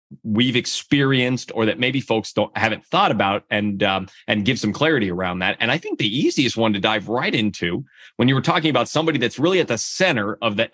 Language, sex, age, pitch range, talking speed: English, male, 30-49, 105-150 Hz, 230 wpm